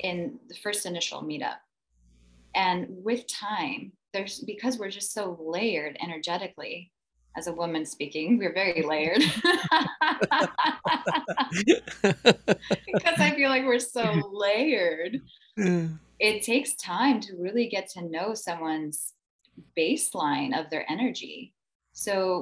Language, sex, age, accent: English, female, 20-39, American